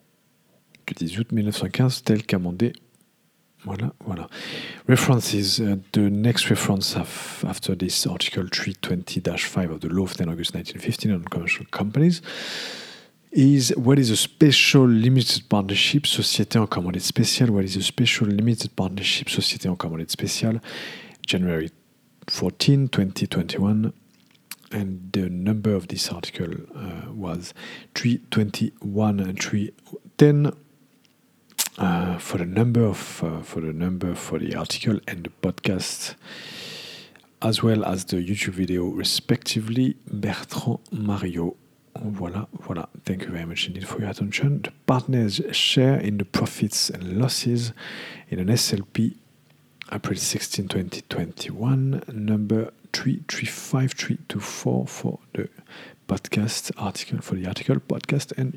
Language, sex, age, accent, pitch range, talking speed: English, male, 40-59, French, 95-125 Hz, 125 wpm